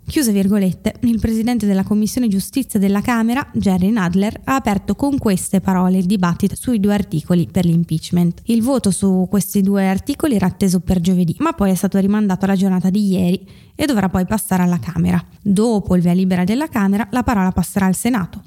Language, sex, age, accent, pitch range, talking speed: Italian, female, 20-39, native, 175-210 Hz, 190 wpm